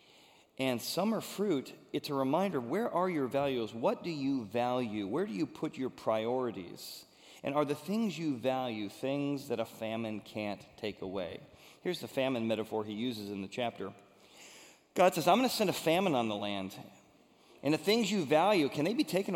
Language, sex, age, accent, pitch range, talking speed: English, male, 40-59, American, 115-150 Hz, 190 wpm